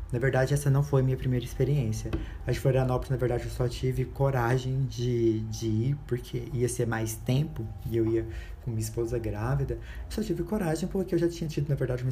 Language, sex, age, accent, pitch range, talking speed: Portuguese, male, 20-39, Brazilian, 115-140 Hz, 220 wpm